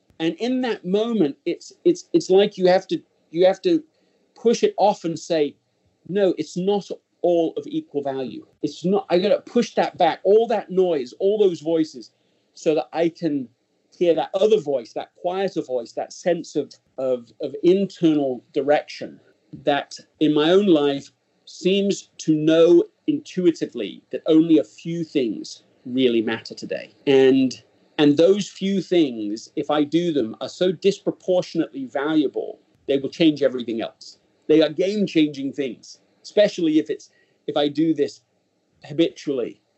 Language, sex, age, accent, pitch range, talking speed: English, male, 40-59, British, 145-200 Hz, 160 wpm